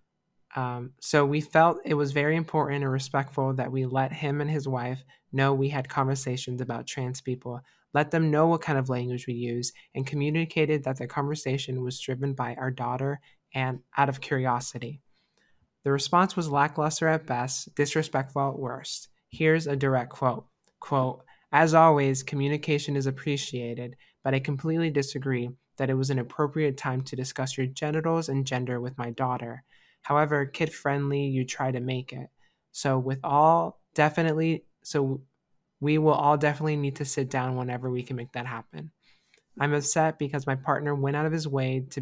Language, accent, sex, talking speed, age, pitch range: English, American, male, 175 wpm, 20-39, 130-150 Hz